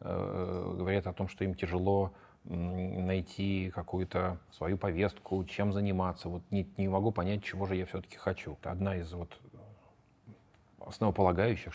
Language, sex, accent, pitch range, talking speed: Russian, male, native, 90-105 Hz, 125 wpm